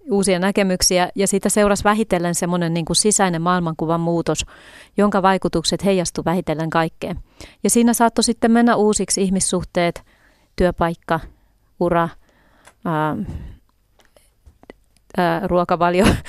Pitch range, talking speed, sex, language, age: 170-205 Hz, 100 wpm, female, Finnish, 30-49